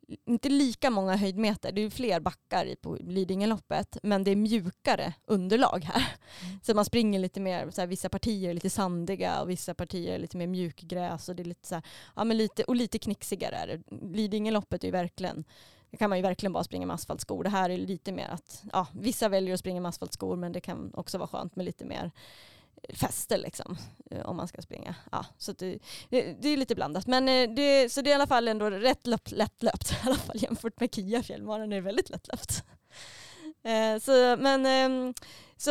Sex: female